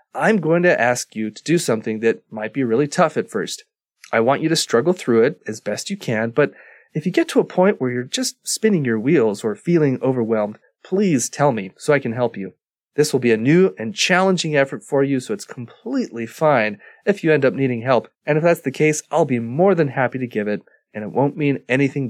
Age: 30-49